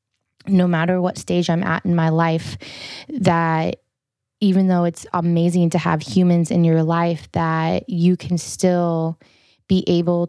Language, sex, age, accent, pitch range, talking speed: English, female, 20-39, American, 165-180 Hz, 150 wpm